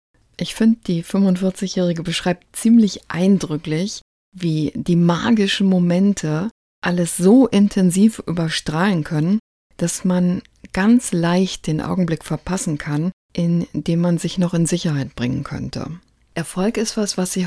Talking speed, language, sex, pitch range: 130 wpm, German, female, 155-195 Hz